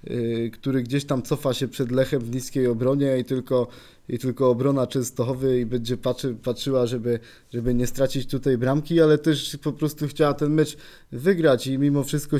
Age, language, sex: 20-39, Polish, male